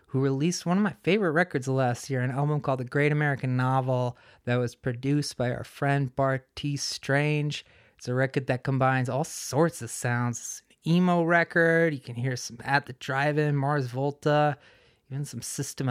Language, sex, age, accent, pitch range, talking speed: English, male, 20-39, American, 130-155 Hz, 185 wpm